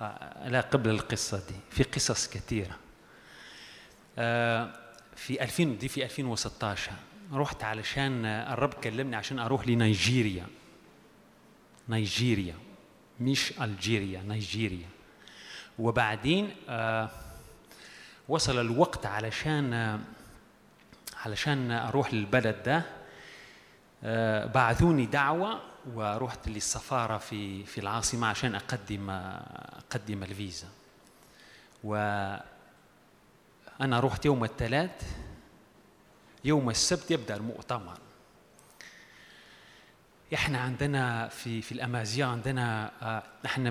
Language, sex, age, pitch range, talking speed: Arabic, male, 30-49, 105-135 Hz, 80 wpm